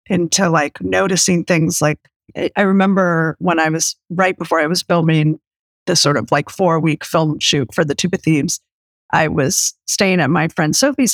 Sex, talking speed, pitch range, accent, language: female, 185 wpm, 155-190 Hz, American, English